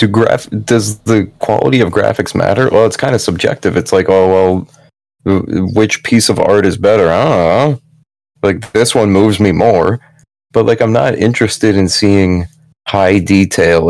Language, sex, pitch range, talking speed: English, male, 95-115 Hz, 165 wpm